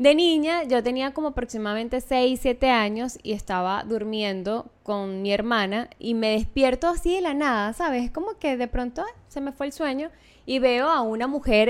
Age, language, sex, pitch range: 10-29, Spanish, female, 210-265 Hz